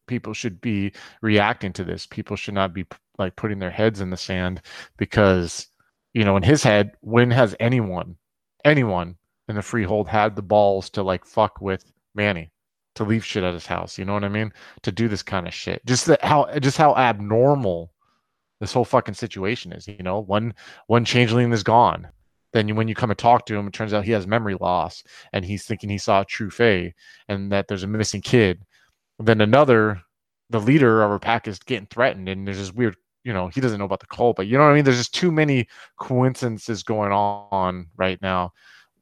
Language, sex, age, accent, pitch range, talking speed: English, male, 20-39, American, 95-115 Hz, 210 wpm